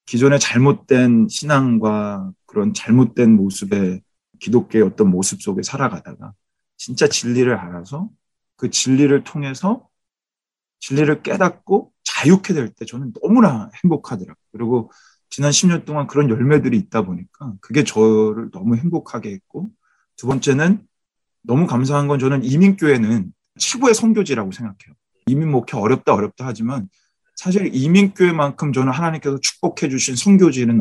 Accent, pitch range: native, 115-170 Hz